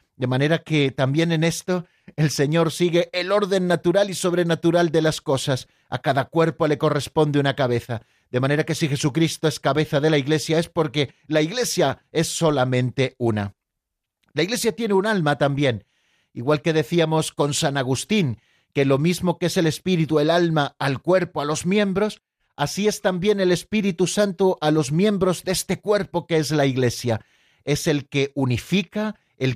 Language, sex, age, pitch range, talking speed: Spanish, male, 40-59, 135-180 Hz, 180 wpm